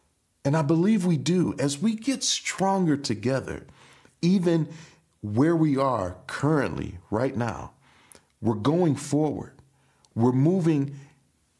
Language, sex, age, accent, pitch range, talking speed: English, male, 40-59, American, 105-150 Hz, 115 wpm